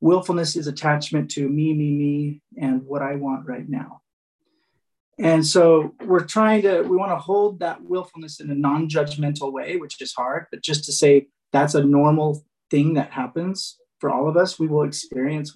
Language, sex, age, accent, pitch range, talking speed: English, male, 30-49, American, 145-180 Hz, 185 wpm